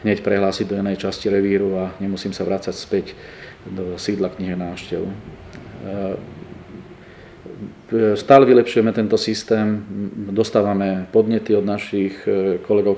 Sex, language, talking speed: male, Slovak, 110 wpm